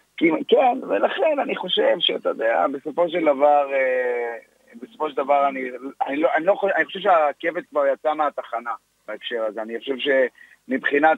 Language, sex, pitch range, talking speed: Hebrew, male, 130-160 Hz, 150 wpm